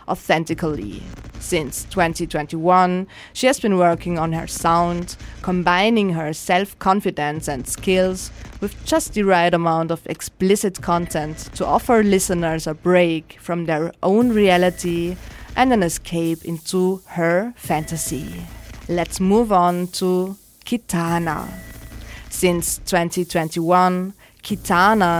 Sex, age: female, 20-39